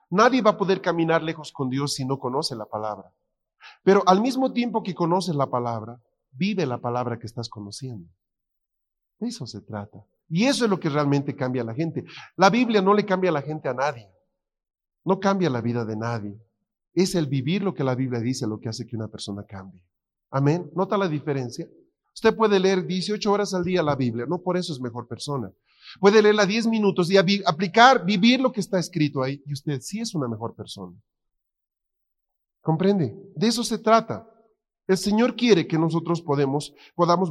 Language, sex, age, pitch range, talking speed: Spanish, male, 40-59, 130-200 Hz, 195 wpm